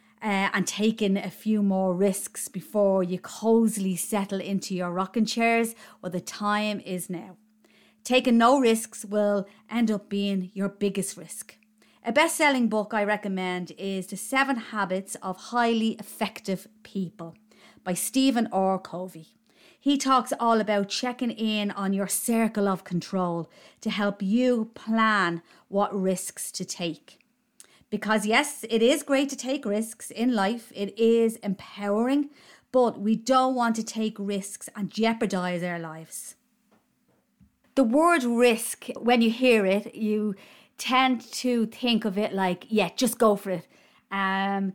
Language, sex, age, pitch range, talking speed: English, female, 30-49, 195-235 Hz, 150 wpm